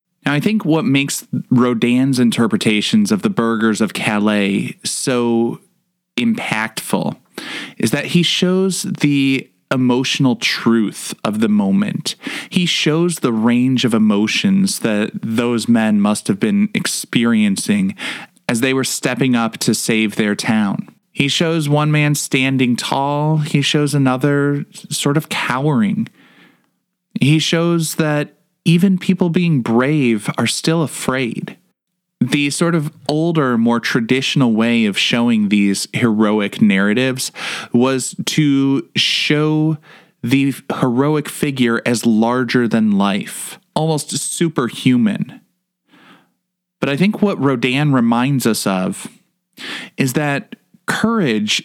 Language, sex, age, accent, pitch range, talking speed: English, male, 20-39, American, 120-185 Hz, 120 wpm